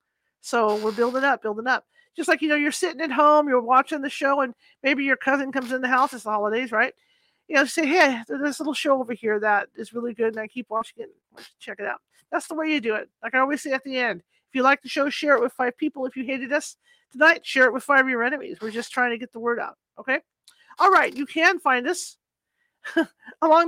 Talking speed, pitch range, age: 260 wpm, 235-300 Hz, 40-59